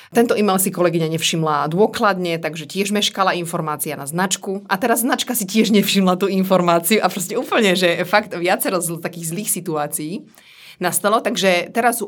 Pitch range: 165-195 Hz